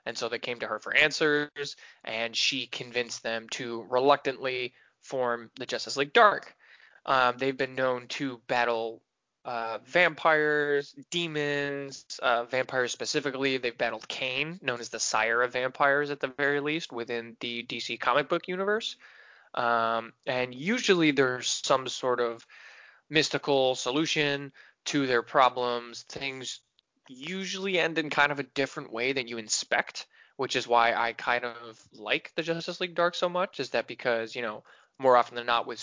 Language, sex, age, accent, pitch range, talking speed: English, male, 20-39, American, 120-145 Hz, 160 wpm